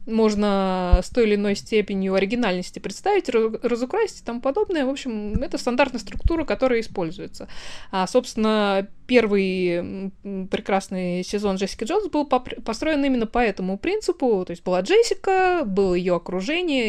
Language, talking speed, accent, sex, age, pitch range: Russian, 140 wpm, native, female, 20-39, 190-265 Hz